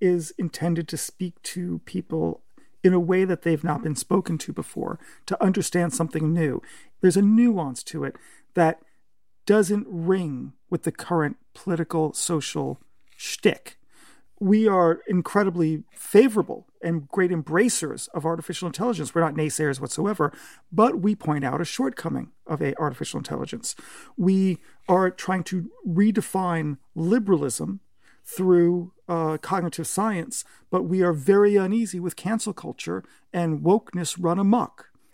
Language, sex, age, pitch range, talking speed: English, male, 40-59, 165-200 Hz, 135 wpm